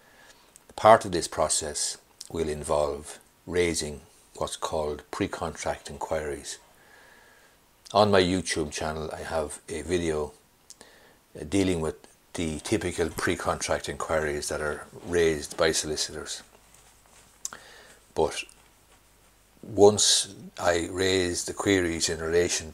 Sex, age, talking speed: male, 60-79, 100 wpm